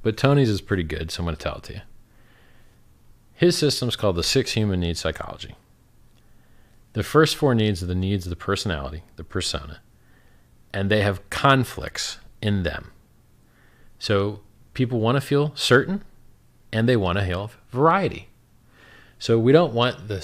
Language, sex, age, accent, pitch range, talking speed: English, male, 40-59, American, 95-140 Hz, 170 wpm